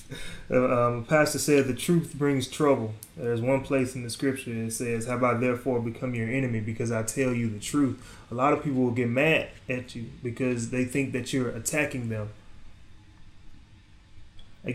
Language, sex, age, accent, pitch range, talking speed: English, male, 20-39, American, 115-145 Hz, 185 wpm